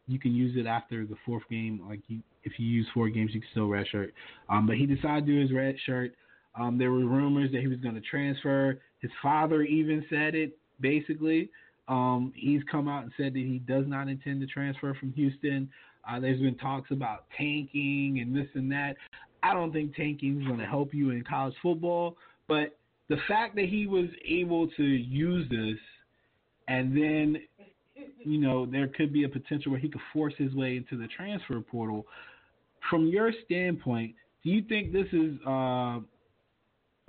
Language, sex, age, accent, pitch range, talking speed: English, male, 20-39, American, 125-150 Hz, 195 wpm